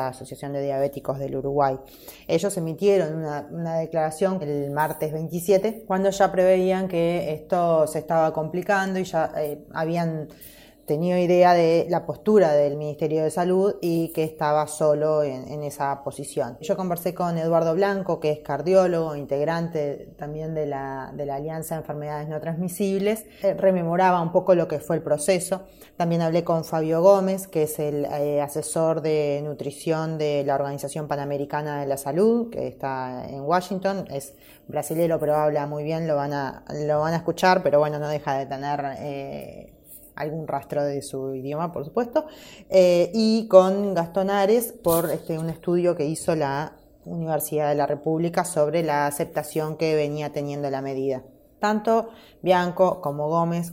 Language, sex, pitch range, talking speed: Spanish, female, 145-180 Hz, 165 wpm